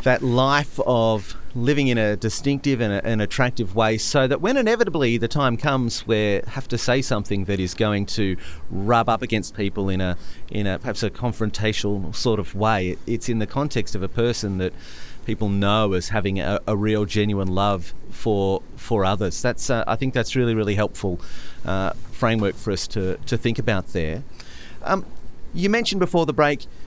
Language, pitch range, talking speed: English, 105-135 Hz, 190 wpm